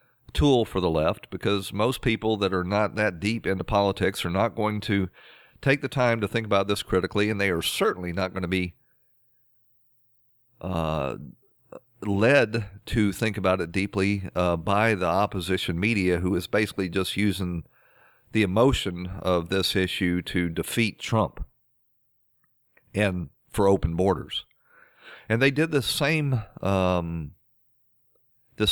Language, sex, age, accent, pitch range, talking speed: English, male, 40-59, American, 90-115 Hz, 145 wpm